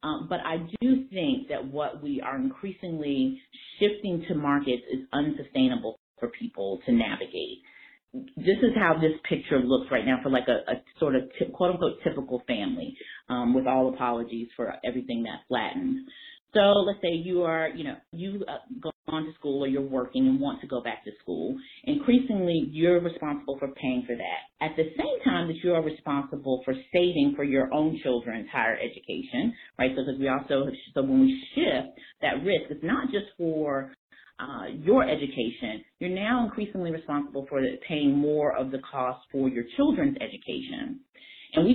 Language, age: English, 30-49